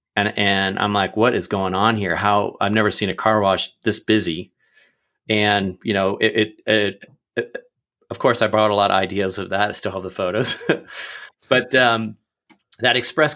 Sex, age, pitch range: male, 30-49, 95-110 Hz